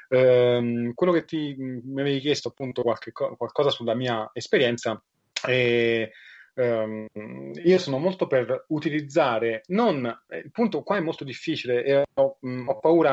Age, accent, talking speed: 30-49, native, 145 wpm